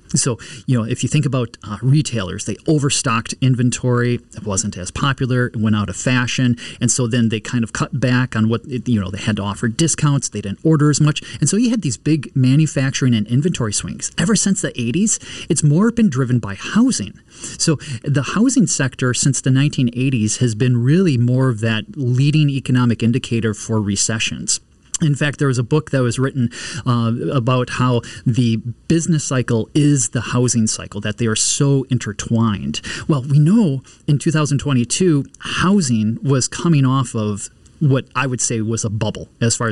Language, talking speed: English, 185 wpm